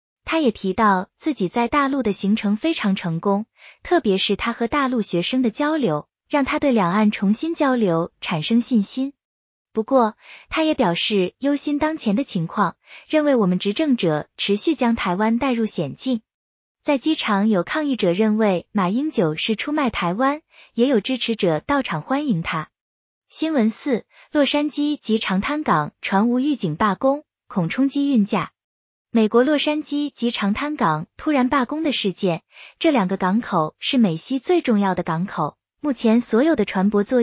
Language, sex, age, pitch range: Chinese, female, 20-39, 200-280 Hz